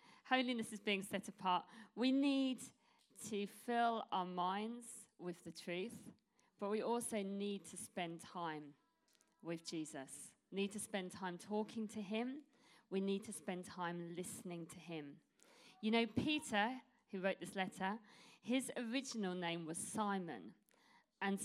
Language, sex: English, female